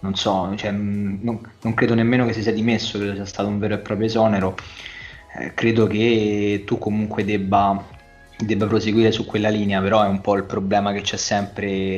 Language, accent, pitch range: Italian, native, 100-110 Hz